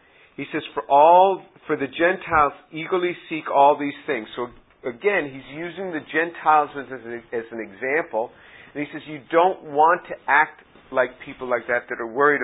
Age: 50-69